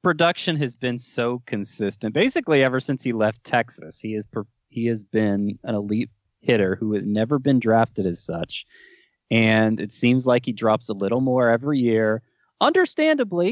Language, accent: English, American